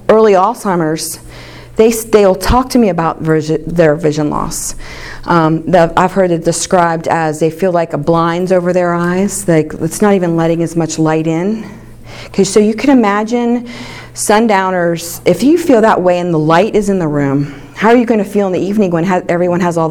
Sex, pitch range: female, 160-205 Hz